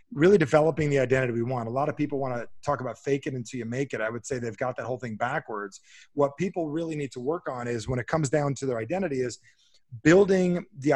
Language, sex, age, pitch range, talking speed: English, male, 30-49, 130-160 Hz, 255 wpm